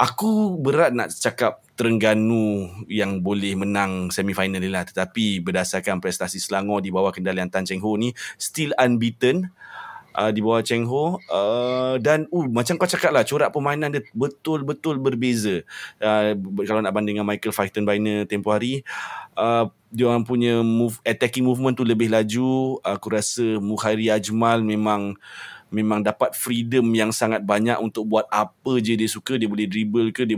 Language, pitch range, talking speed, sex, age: Malay, 105-130 Hz, 150 wpm, male, 20-39